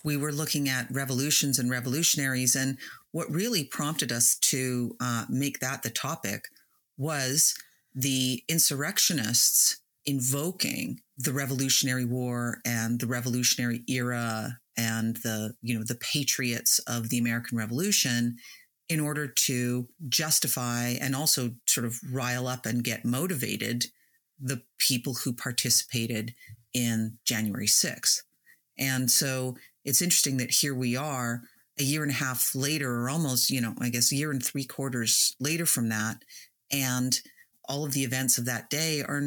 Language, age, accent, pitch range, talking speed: English, 40-59, American, 120-145 Hz, 145 wpm